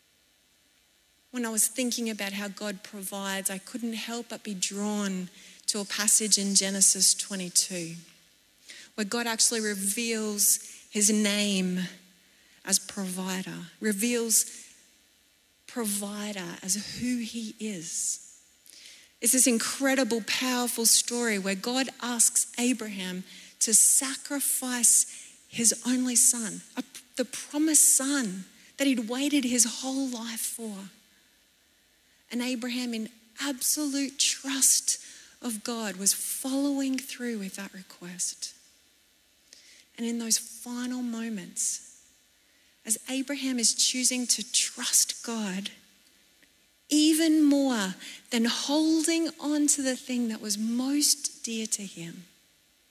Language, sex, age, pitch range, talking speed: English, female, 30-49, 205-255 Hz, 110 wpm